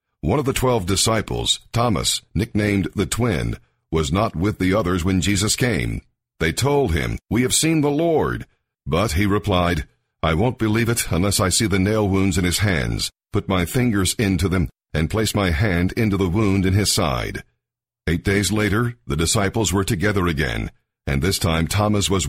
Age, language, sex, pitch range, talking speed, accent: 50-69, English, male, 95-115 Hz, 185 wpm, American